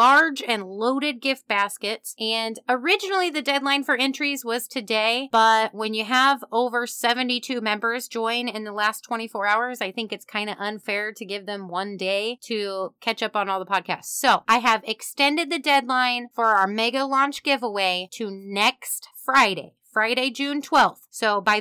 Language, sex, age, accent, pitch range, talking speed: English, female, 30-49, American, 210-265 Hz, 175 wpm